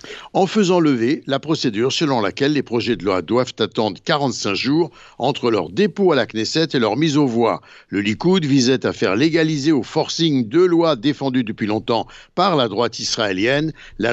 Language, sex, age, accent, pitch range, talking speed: Italian, male, 60-79, French, 120-150 Hz, 185 wpm